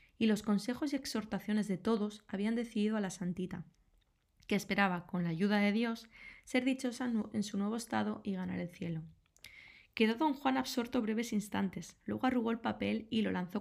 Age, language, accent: 20-39, Spanish, Spanish